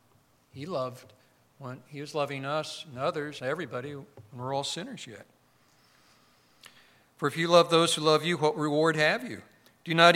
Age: 50-69